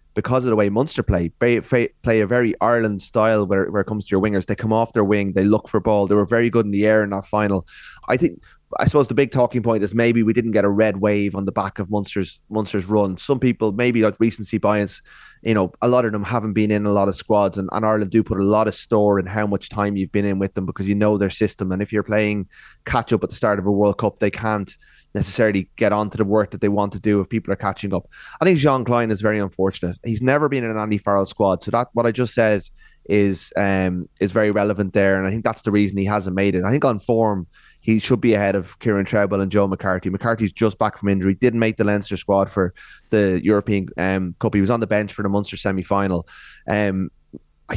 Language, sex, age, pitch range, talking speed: English, male, 20-39, 100-115 Hz, 265 wpm